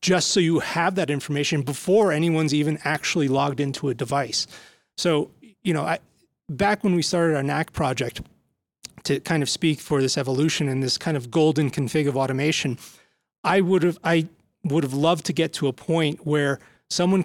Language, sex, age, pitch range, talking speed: English, male, 30-49, 145-170 Hz, 185 wpm